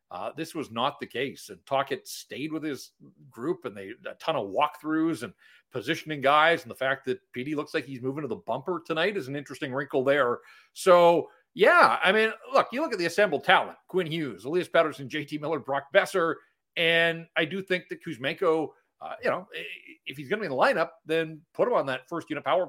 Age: 40-59